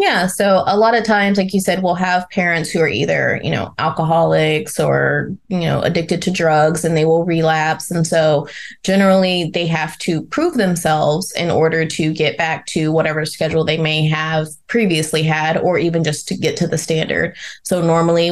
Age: 20-39